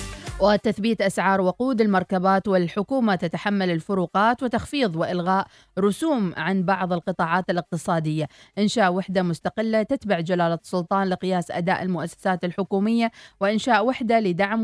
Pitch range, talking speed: 165-205 Hz, 110 wpm